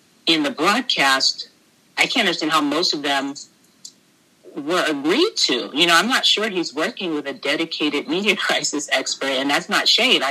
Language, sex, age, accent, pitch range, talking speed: English, female, 30-49, American, 145-215 Hz, 175 wpm